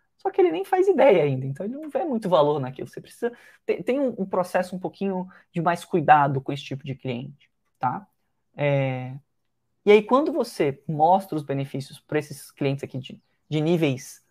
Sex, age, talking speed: male, 20-39, 190 wpm